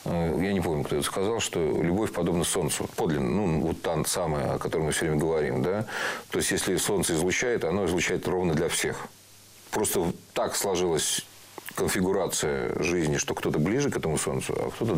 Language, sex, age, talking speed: Russian, male, 40-59, 180 wpm